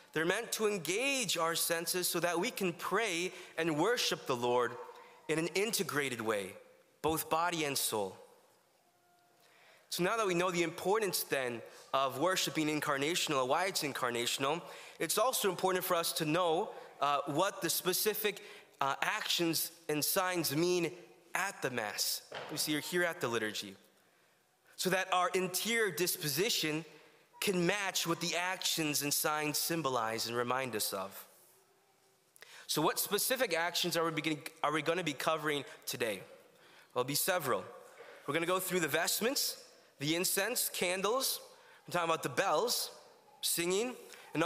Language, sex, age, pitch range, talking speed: English, male, 20-39, 150-190 Hz, 155 wpm